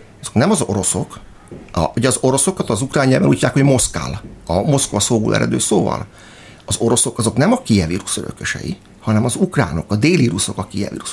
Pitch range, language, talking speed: 105-135 Hz, Hungarian, 185 wpm